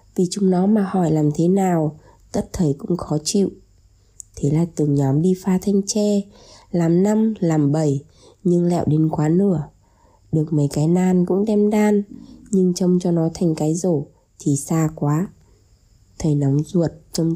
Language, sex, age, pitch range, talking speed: Vietnamese, female, 20-39, 140-180 Hz, 175 wpm